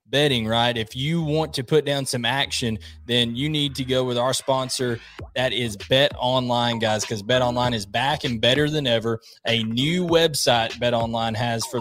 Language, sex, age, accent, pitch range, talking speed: English, male, 20-39, American, 115-145 Hz, 200 wpm